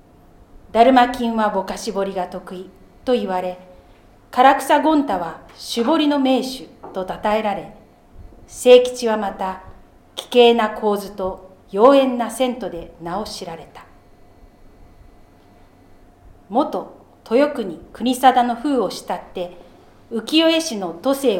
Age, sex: 40-59, female